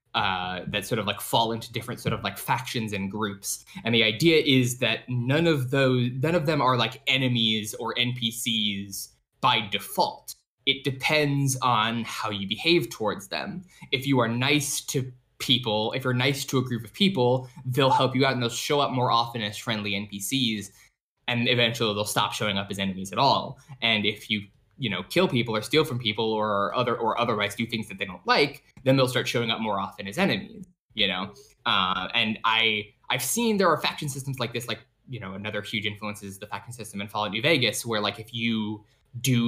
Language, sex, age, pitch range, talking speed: English, male, 10-29, 105-135 Hz, 210 wpm